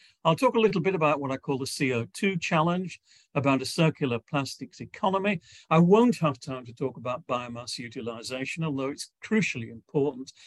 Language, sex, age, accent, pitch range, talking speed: English, male, 50-69, British, 130-165 Hz, 170 wpm